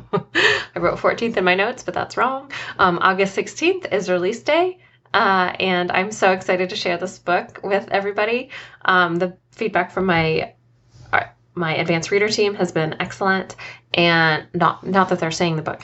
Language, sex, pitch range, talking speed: English, female, 160-195 Hz, 175 wpm